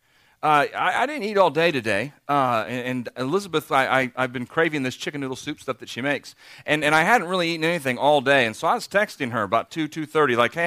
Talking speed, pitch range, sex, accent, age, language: 255 wpm, 130-160 Hz, male, American, 40-59, English